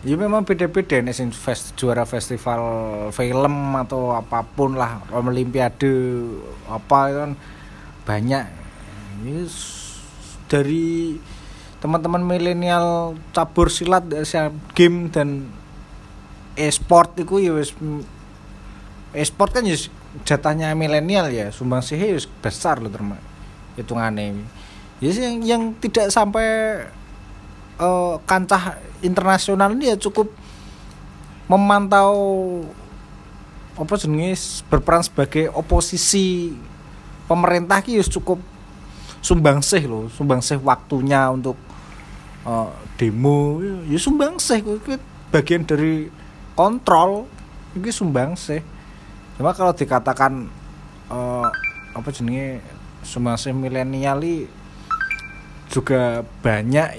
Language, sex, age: Indonesian, male, 20-39